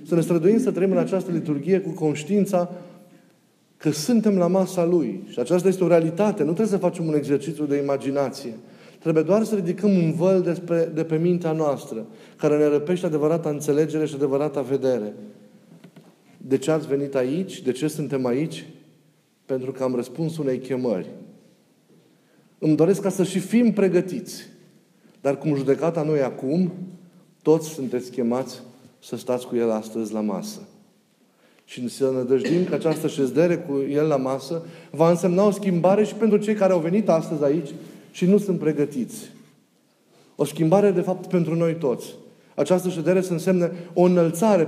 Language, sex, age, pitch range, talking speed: Romanian, male, 30-49, 145-185 Hz, 165 wpm